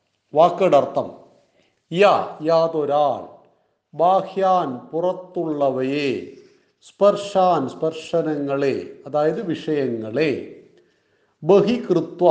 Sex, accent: male, native